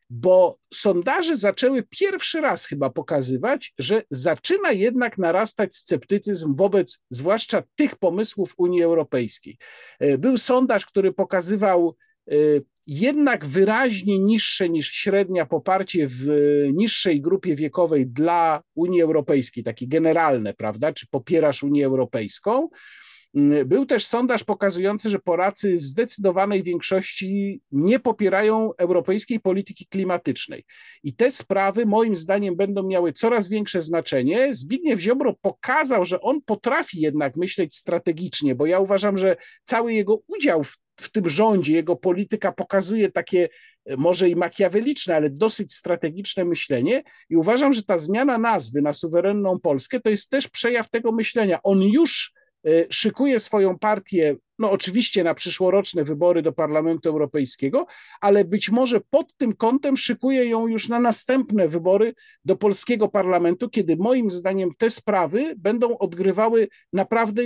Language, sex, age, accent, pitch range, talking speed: Polish, male, 50-69, native, 170-230 Hz, 130 wpm